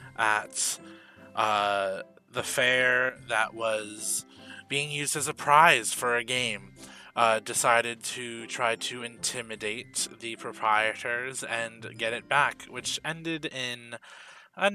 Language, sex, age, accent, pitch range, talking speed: English, male, 20-39, American, 105-130 Hz, 120 wpm